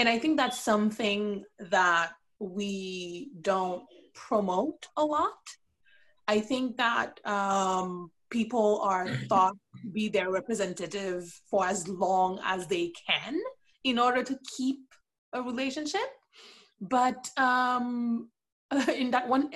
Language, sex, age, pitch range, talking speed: English, female, 20-39, 185-255 Hz, 120 wpm